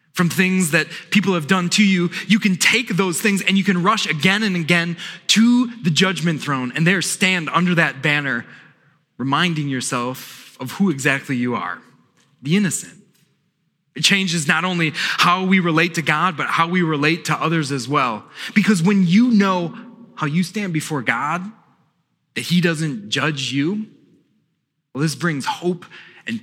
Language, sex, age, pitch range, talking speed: English, male, 20-39, 150-195 Hz, 170 wpm